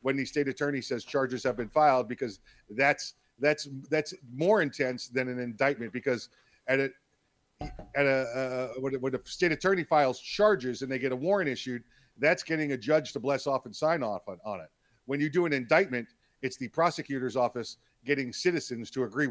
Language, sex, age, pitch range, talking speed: English, male, 40-59, 125-150 Hz, 195 wpm